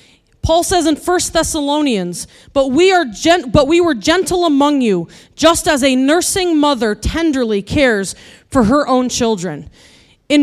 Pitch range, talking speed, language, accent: 235-325 Hz, 140 wpm, English, American